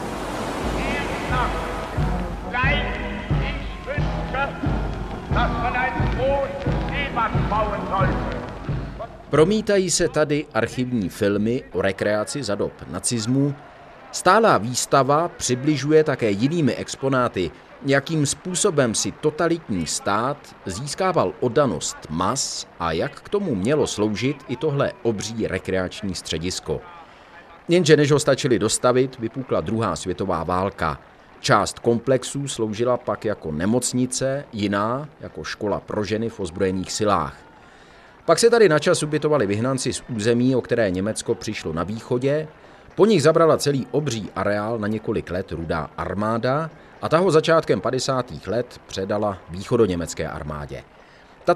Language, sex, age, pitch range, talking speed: Czech, male, 50-69, 100-145 Hz, 110 wpm